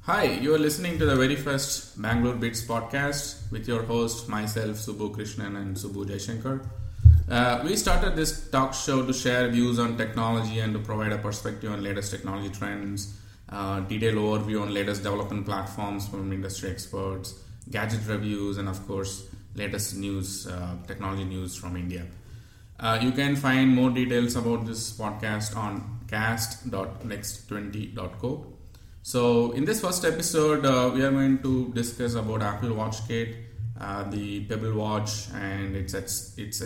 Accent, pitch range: Indian, 100-120 Hz